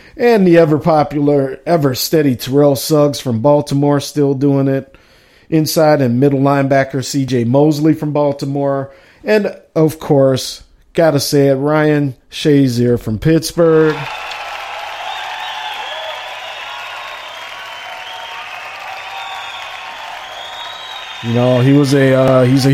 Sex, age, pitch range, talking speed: male, 50-69, 125-150 Hz, 105 wpm